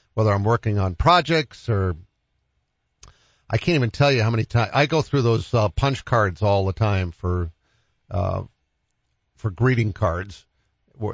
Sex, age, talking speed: male, 50-69, 160 wpm